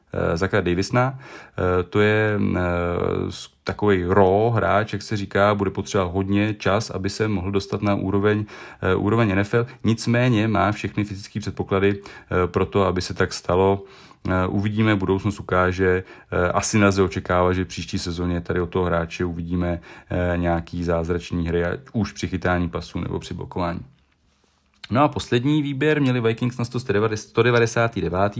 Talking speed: 135 wpm